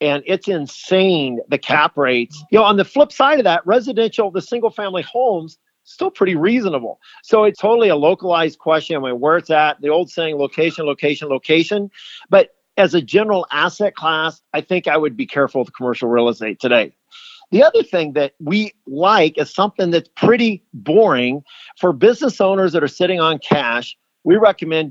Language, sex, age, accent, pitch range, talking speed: English, male, 50-69, American, 150-190 Hz, 180 wpm